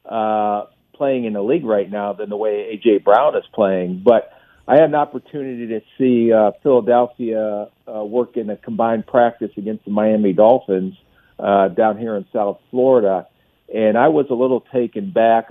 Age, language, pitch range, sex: 50-69, English, 100-120 Hz, male